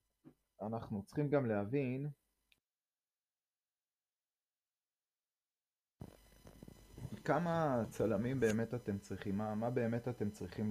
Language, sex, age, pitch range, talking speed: Hebrew, male, 30-49, 95-115 Hz, 80 wpm